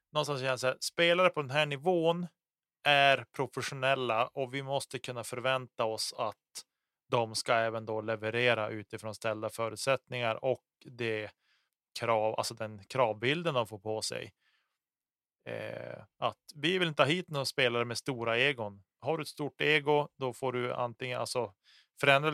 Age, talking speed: 30-49, 155 wpm